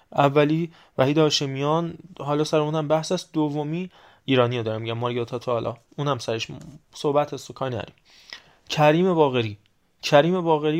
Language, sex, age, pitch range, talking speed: Persian, male, 20-39, 120-150 Hz, 155 wpm